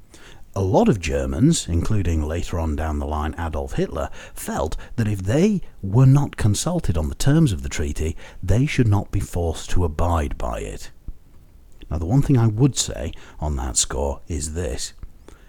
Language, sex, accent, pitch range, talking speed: English, male, British, 80-105 Hz, 180 wpm